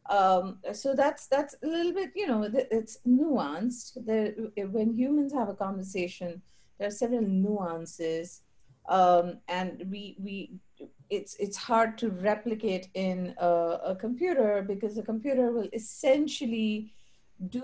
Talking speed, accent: 135 wpm, Indian